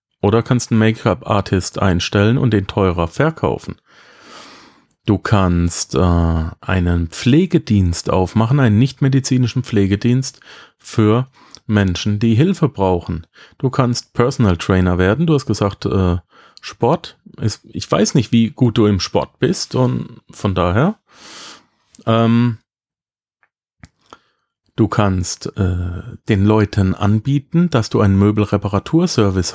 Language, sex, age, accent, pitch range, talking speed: German, male, 40-59, German, 95-120 Hz, 115 wpm